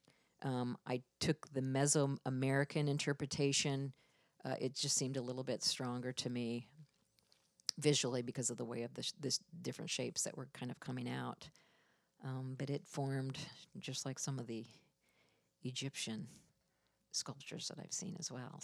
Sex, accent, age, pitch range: female, American, 50-69, 135-165 Hz